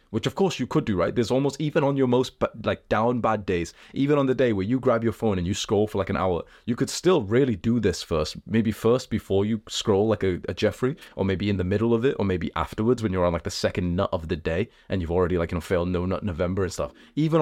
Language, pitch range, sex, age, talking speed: English, 95-120 Hz, male, 20-39, 285 wpm